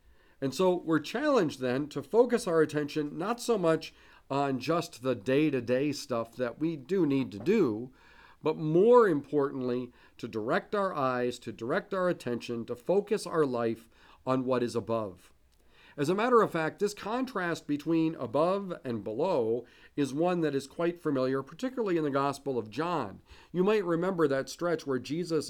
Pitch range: 125-170 Hz